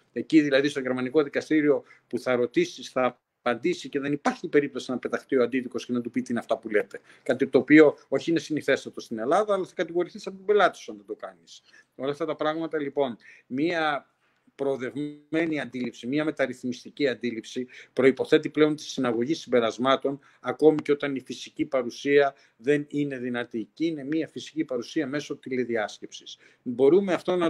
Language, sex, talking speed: Greek, male, 170 wpm